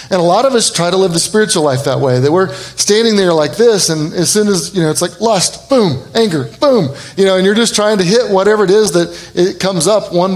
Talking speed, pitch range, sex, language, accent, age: 270 wpm, 150-195 Hz, male, English, American, 30-49